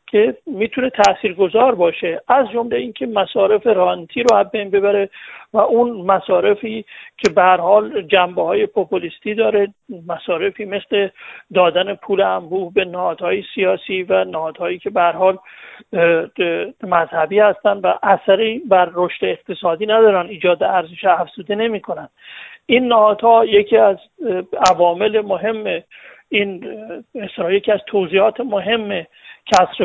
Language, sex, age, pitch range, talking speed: English, male, 50-69, 185-225 Hz, 125 wpm